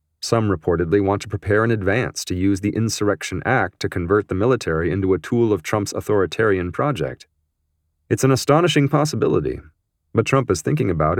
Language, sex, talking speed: English, male, 170 wpm